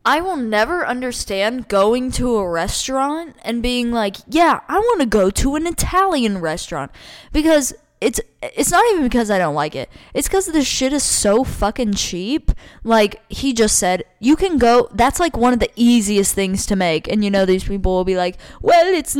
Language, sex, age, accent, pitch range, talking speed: English, female, 10-29, American, 190-250 Hz, 200 wpm